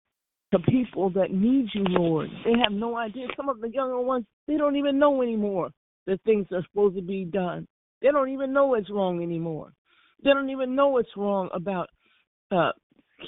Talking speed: 190 wpm